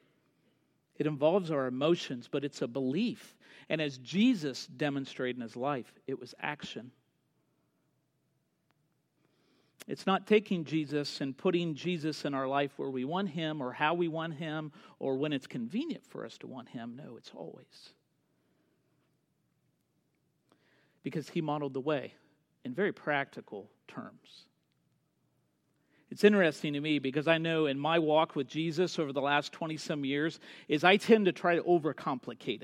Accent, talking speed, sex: American, 150 wpm, male